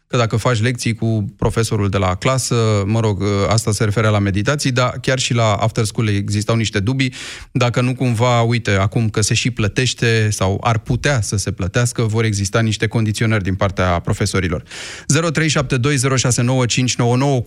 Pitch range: 110-130 Hz